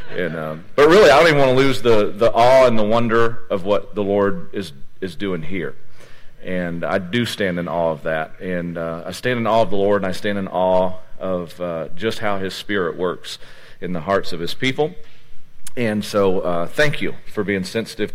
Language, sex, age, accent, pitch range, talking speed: English, male, 40-59, American, 95-115 Hz, 220 wpm